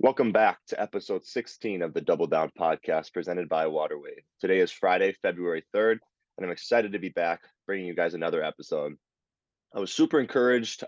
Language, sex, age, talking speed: English, male, 20-39, 180 wpm